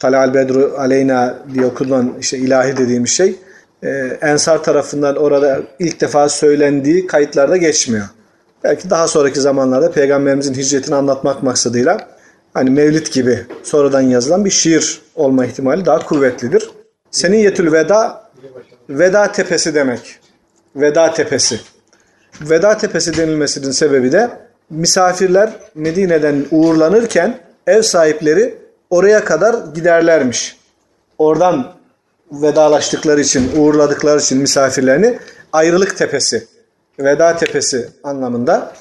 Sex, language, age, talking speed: male, Turkish, 40-59, 105 wpm